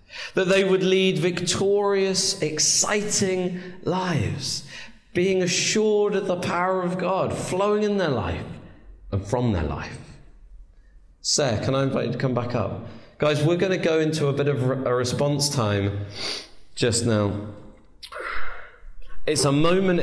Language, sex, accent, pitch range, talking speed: English, male, British, 120-155 Hz, 145 wpm